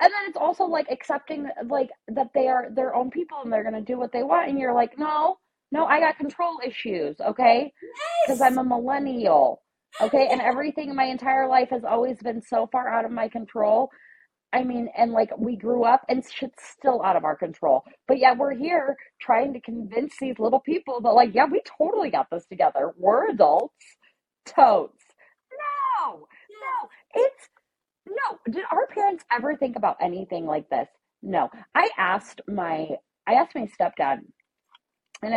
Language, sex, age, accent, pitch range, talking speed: English, female, 30-49, American, 235-330 Hz, 185 wpm